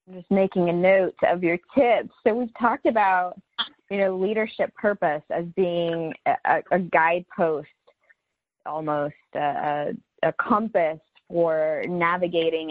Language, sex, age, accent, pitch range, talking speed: English, female, 20-39, American, 160-205 Hz, 130 wpm